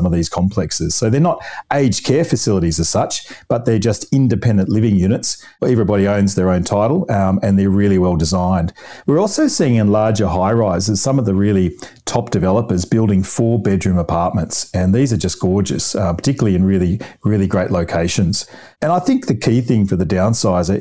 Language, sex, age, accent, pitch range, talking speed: English, male, 40-59, Australian, 95-115 Hz, 185 wpm